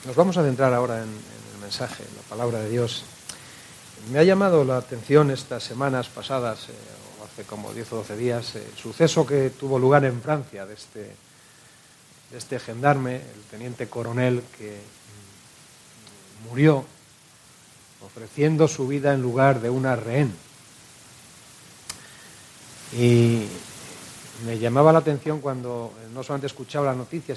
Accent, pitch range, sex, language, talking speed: Spanish, 120-155 Hz, male, English, 145 wpm